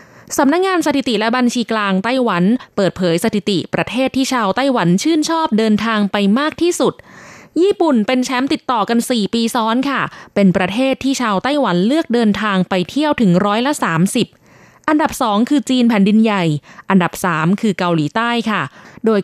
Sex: female